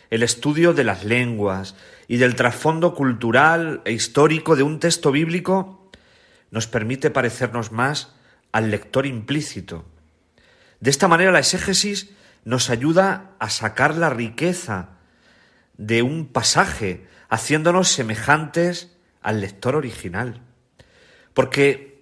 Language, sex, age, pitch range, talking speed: Spanish, male, 40-59, 115-160 Hz, 115 wpm